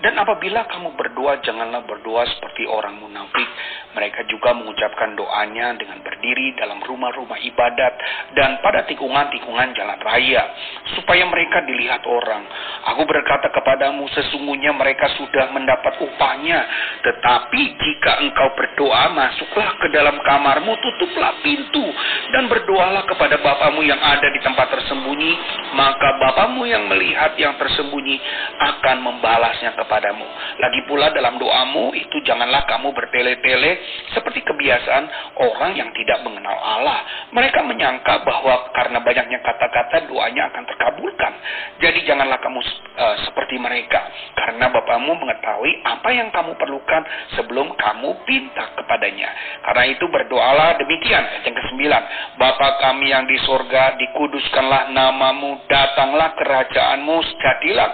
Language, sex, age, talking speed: Indonesian, male, 40-59, 125 wpm